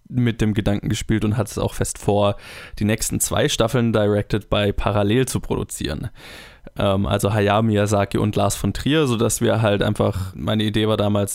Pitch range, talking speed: 105-115 Hz, 180 wpm